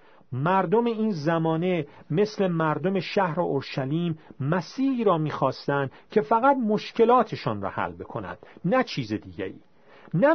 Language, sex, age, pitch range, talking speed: Persian, male, 40-59, 150-215 Hz, 115 wpm